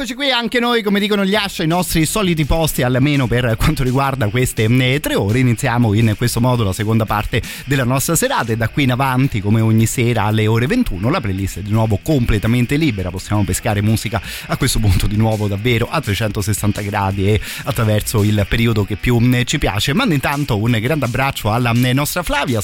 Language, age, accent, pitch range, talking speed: Italian, 30-49, native, 105-130 Hz, 195 wpm